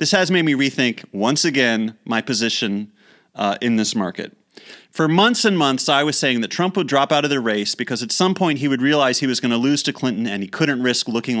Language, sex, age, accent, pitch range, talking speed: English, male, 30-49, American, 120-160 Hz, 245 wpm